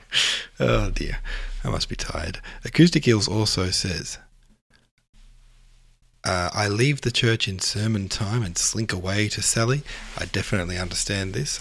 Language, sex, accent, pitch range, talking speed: English, male, Australian, 90-115 Hz, 140 wpm